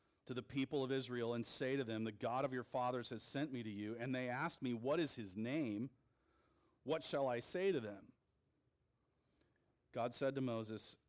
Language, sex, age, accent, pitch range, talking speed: English, male, 40-59, American, 105-130 Hz, 200 wpm